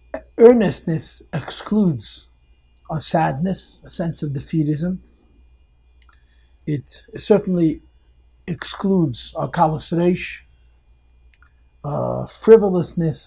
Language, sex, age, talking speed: English, male, 60-79, 70 wpm